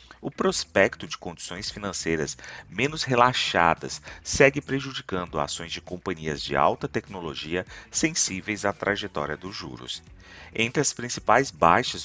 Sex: male